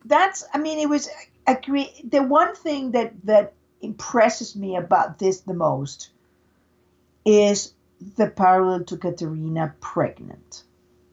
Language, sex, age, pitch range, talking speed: English, female, 50-69, 190-250 Hz, 135 wpm